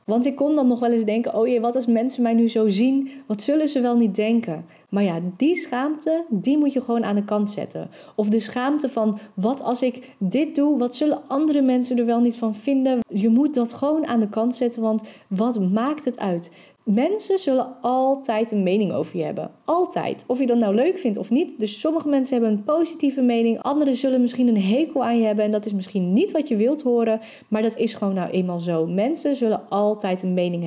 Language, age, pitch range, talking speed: Dutch, 30-49, 210-260 Hz, 235 wpm